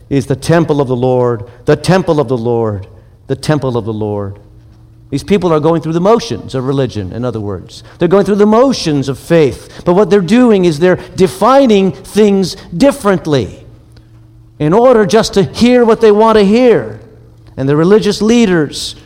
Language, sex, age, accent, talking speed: English, male, 50-69, American, 185 wpm